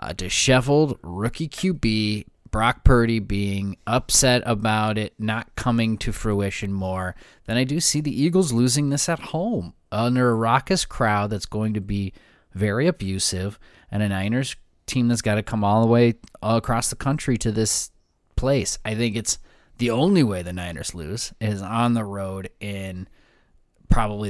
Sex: male